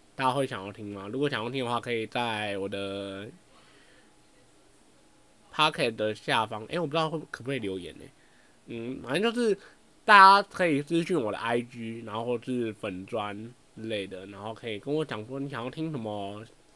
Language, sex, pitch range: Chinese, male, 105-140 Hz